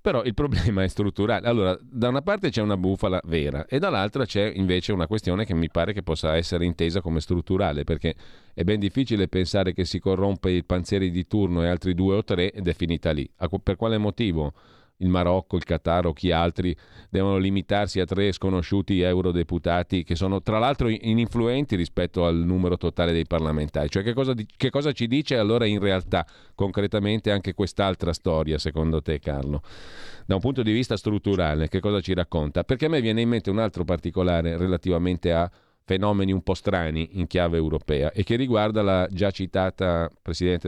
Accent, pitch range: native, 85-105 Hz